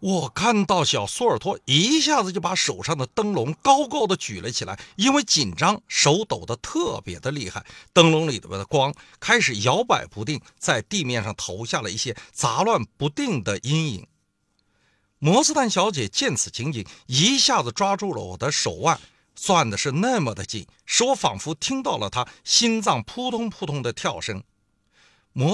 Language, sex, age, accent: Chinese, male, 50-69, native